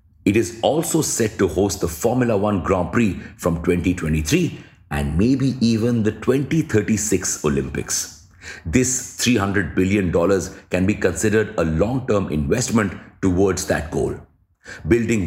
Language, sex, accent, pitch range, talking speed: English, male, Indian, 85-110 Hz, 125 wpm